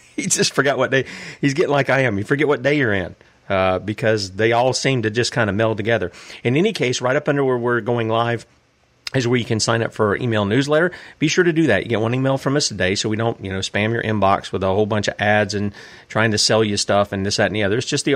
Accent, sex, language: American, male, English